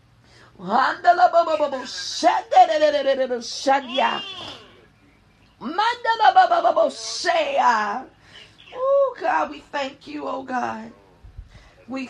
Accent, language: American, English